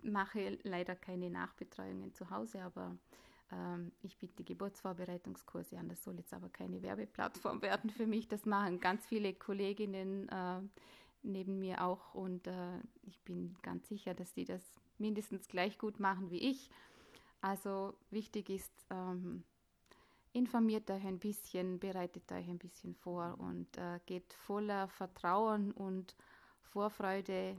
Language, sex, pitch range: German, female, 180-205 Hz